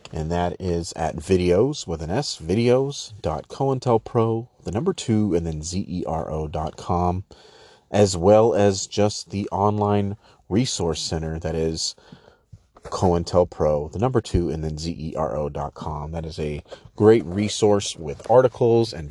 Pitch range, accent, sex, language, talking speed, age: 85-105 Hz, American, male, English, 125 wpm, 30-49